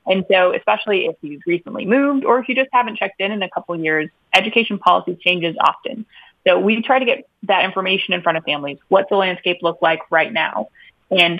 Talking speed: 215 wpm